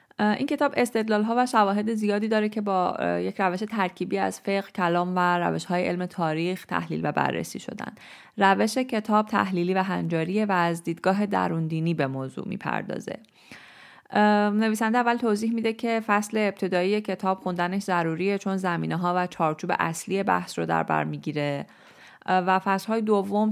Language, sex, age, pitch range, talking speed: Persian, female, 30-49, 165-200 Hz, 155 wpm